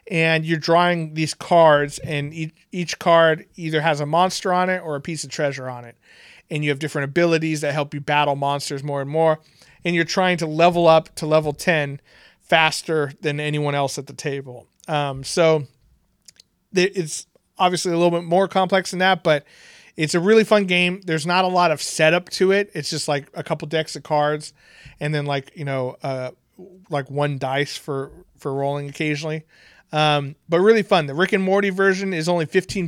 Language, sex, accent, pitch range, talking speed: English, male, American, 145-175 Hz, 195 wpm